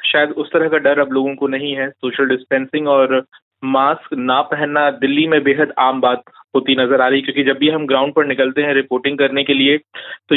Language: Hindi